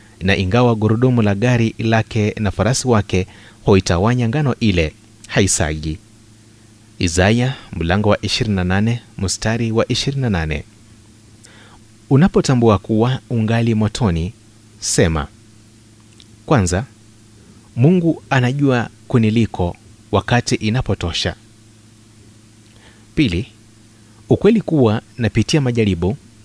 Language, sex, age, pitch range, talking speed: Swahili, male, 30-49, 105-115 Hz, 80 wpm